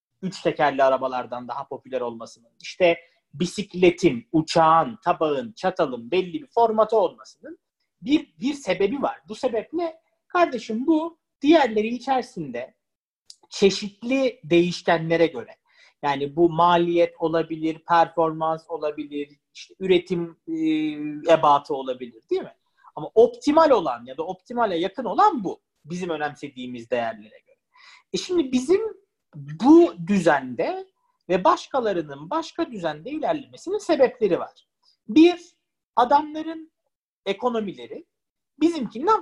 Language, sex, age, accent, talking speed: Turkish, male, 40-59, native, 105 wpm